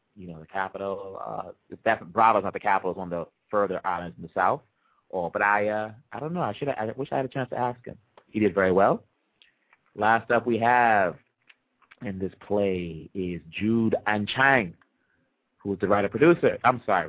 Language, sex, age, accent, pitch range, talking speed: English, male, 30-49, American, 95-120 Hz, 200 wpm